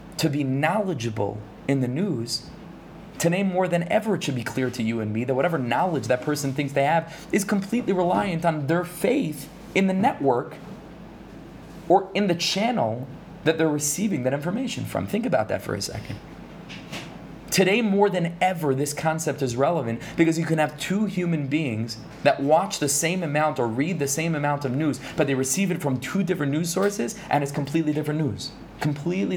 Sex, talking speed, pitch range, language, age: male, 190 wpm, 135-180 Hz, English, 20-39